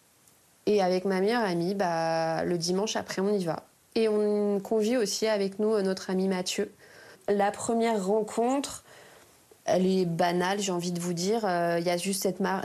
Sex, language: female, French